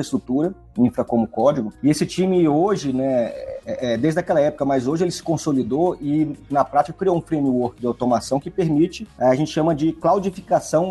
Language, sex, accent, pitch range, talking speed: Portuguese, male, Brazilian, 125-160 Hz, 180 wpm